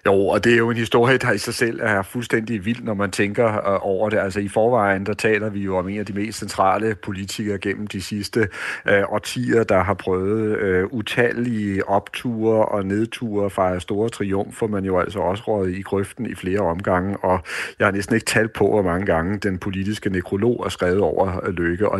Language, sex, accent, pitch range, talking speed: Danish, male, native, 95-110 Hz, 210 wpm